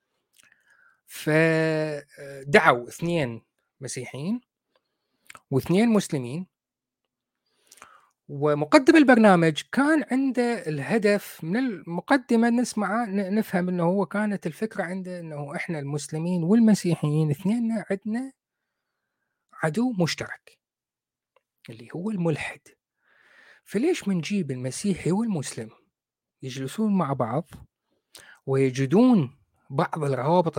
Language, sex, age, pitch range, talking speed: Arabic, male, 30-49, 145-210 Hz, 80 wpm